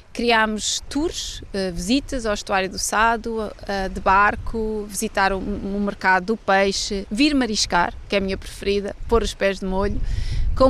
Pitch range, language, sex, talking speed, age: 205-245 Hz, Portuguese, female, 175 wpm, 30-49